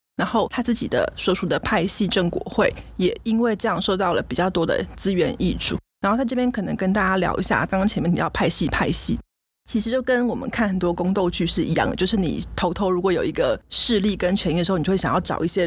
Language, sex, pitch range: Chinese, female, 180-215 Hz